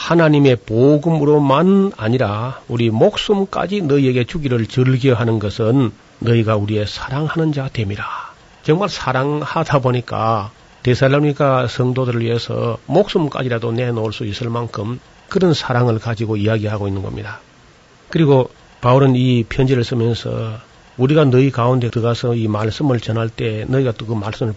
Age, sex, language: 40-59, male, Korean